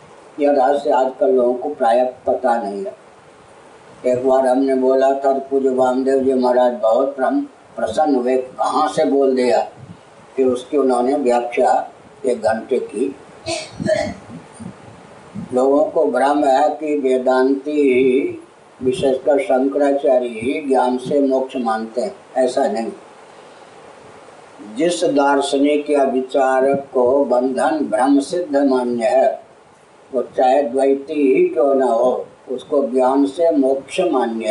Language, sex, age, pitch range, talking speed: Hindi, female, 50-69, 130-155 Hz, 110 wpm